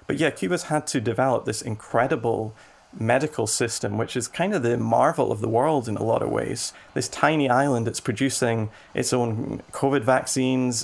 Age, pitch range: 30-49, 115-130 Hz